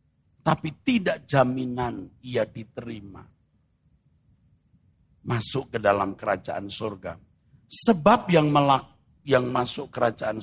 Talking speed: 90 wpm